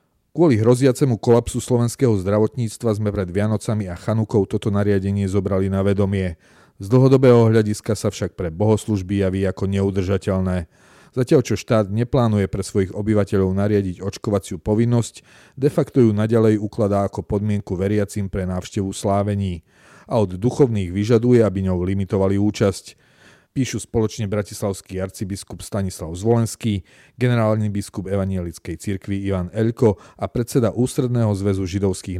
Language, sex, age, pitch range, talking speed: Slovak, male, 40-59, 100-115 Hz, 130 wpm